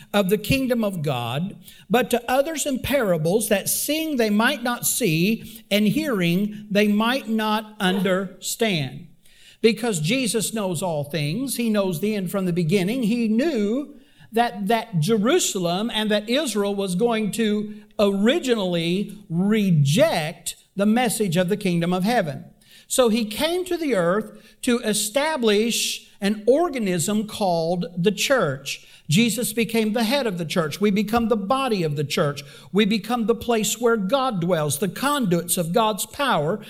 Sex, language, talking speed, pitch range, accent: male, English, 150 wpm, 190-240 Hz, American